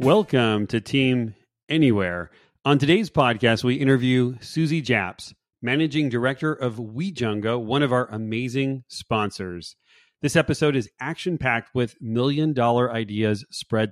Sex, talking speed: male, 120 wpm